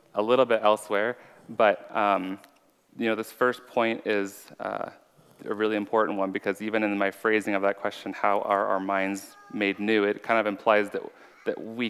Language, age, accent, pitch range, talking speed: English, 30-49, American, 100-115 Hz, 190 wpm